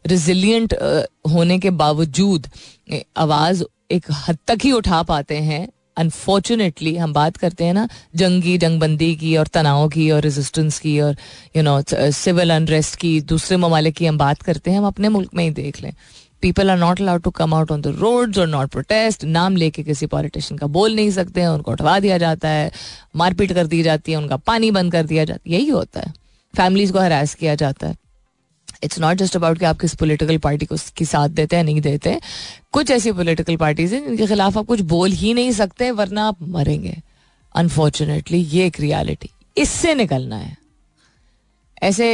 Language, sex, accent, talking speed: Hindi, female, native, 195 wpm